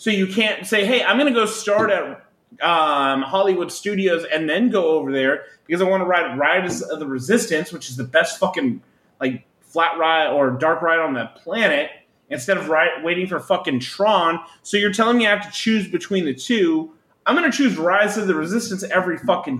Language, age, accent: English, 30-49, American